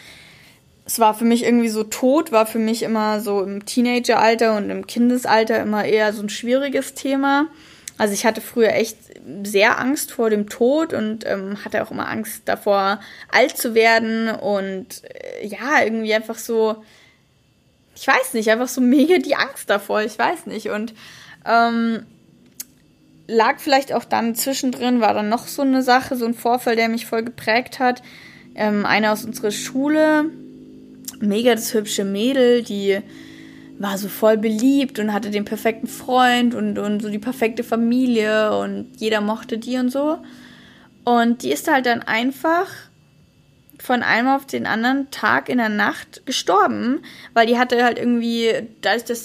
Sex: female